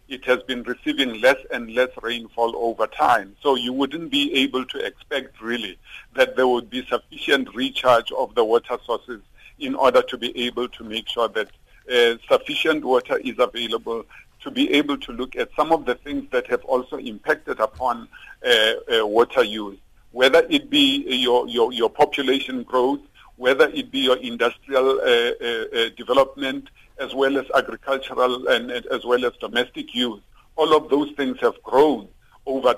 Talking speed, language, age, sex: 175 wpm, English, 50-69, male